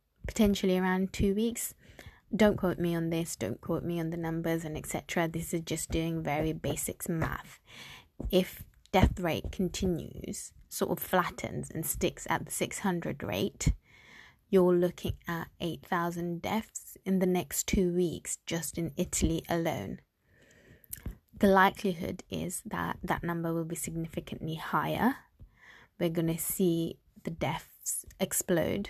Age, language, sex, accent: 20-39, English, female, British